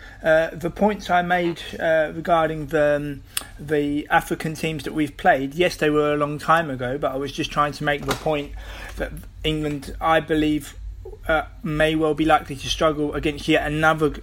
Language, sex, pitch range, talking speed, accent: English, male, 145-170 Hz, 190 wpm, British